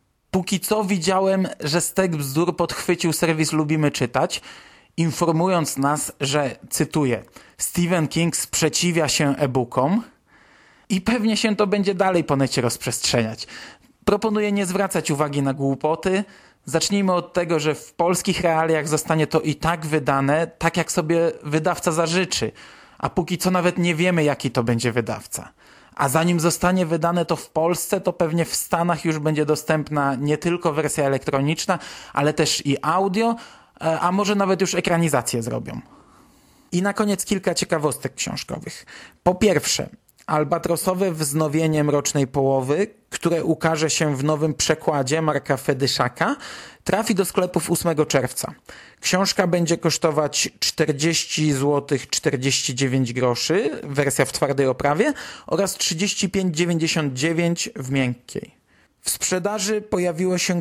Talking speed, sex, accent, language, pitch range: 130 wpm, male, native, Polish, 145-180 Hz